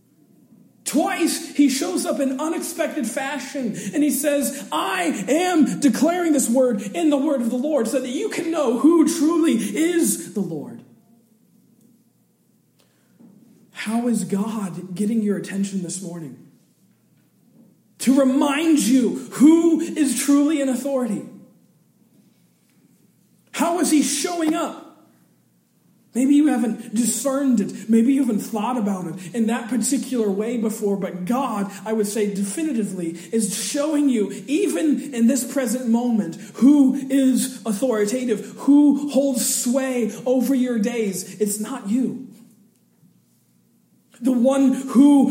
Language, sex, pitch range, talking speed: English, male, 220-280 Hz, 130 wpm